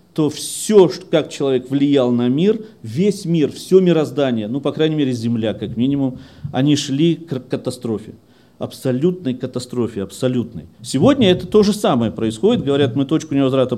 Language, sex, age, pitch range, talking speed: Russian, male, 40-59, 120-165 Hz, 155 wpm